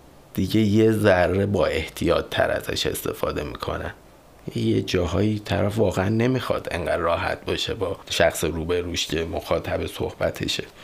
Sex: male